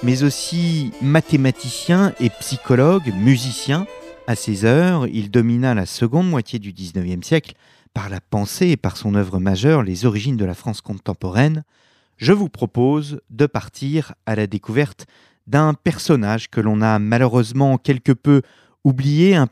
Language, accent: French, French